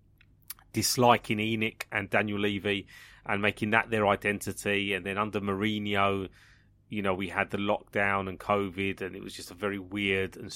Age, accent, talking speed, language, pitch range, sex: 30-49, British, 170 wpm, English, 100-115 Hz, male